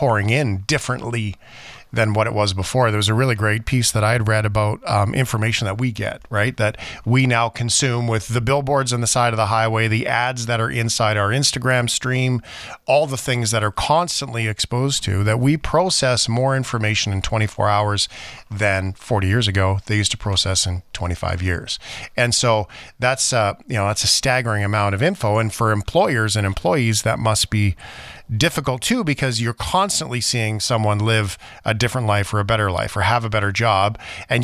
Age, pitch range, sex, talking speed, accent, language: 40-59, 105-130 Hz, male, 195 wpm, American, English